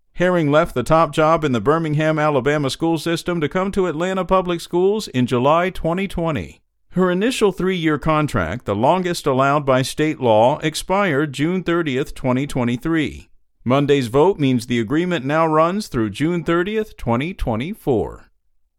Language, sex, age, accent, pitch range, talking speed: English, male, 50-69, American, 130-185 Hz, 145 wpm